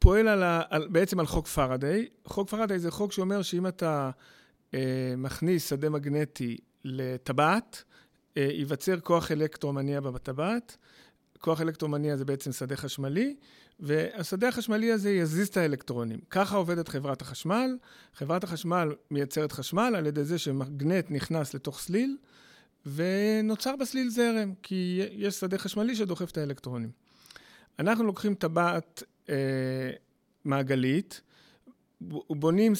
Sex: male